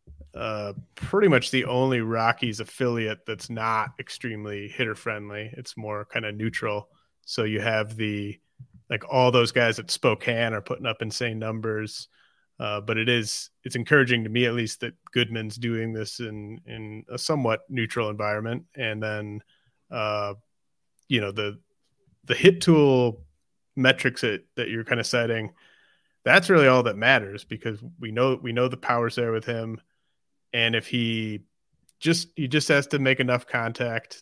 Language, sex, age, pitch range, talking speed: English, male, 30-49, 110-125 Hz, 165 wpm